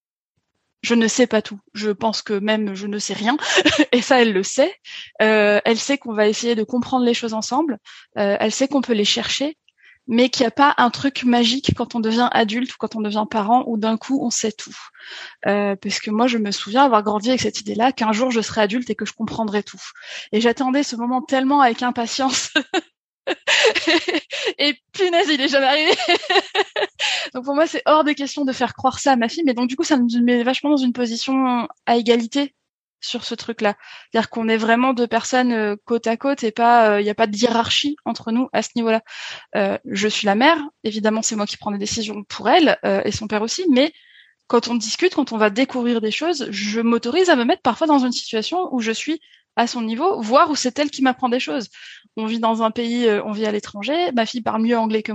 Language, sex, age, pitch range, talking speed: French, female, 20-39, 220-280 Hz, 235 wpm